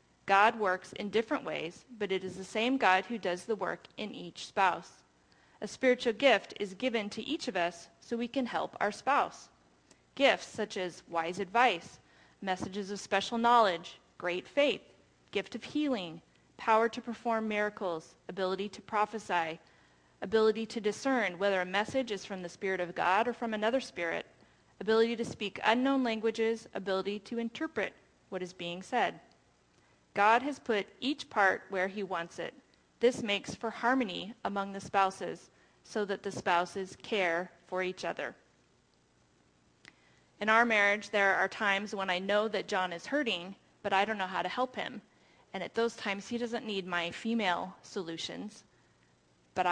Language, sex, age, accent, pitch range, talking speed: English, female, 30-49, American, 175-225 Hz, 165 wpm